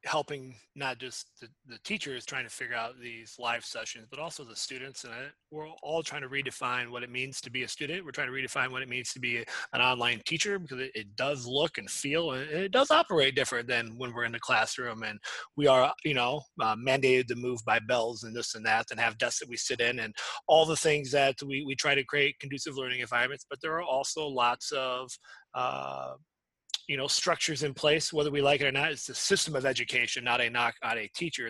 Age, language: 30-49, English